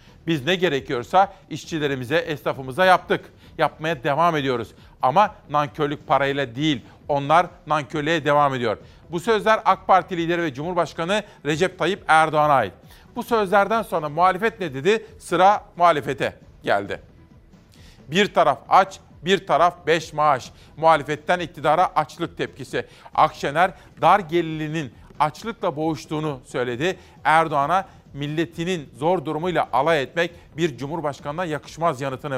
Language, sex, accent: Turkish, male, native